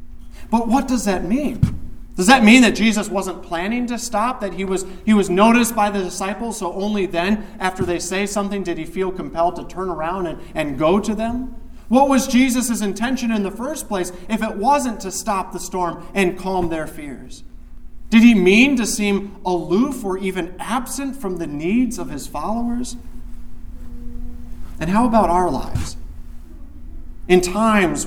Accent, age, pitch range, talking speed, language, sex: American, 40-59, 165-225 Hz, 175 wpm, English, male